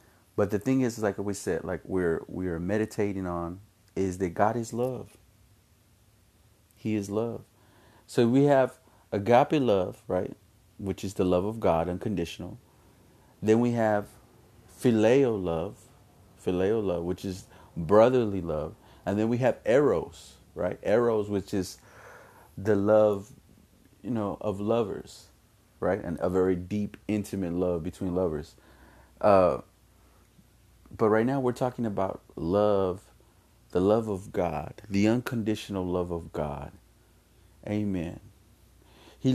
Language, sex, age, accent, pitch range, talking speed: English, male, 30-49, American, 95-110 Hz, 135 wpm